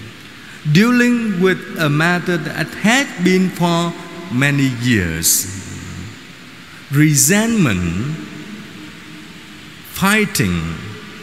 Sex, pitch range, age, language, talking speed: male, 145-185 Hz, 50-69, Vietnamese, 65 wpm